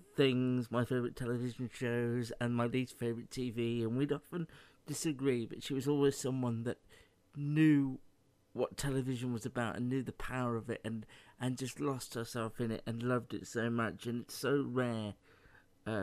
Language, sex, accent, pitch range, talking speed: English, male, British, 115-130 Hz, 180 wpm